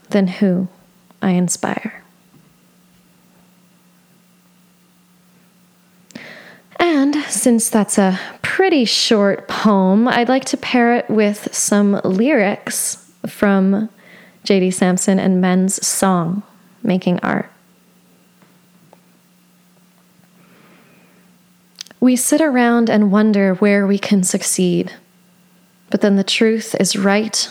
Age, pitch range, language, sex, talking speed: 20-39, 180-205 Hz, English, female, 90 wpm